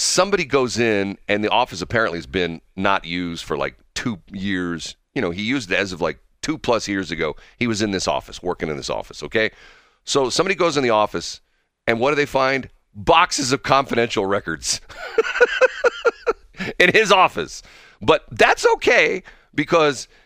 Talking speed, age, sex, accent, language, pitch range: 170 wpm, 40-59, male, American, English, 95-140 Hz